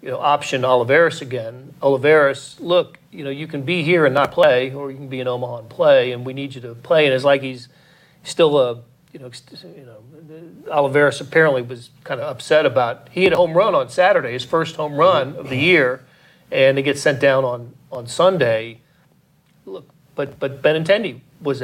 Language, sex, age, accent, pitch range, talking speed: English, male, 40-59, American, 130-165 Hz, 205 wpm